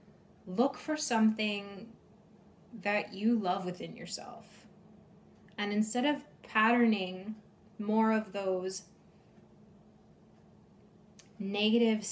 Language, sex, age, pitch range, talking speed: English, female, 20-39, 200-230 Hz, 80 wpm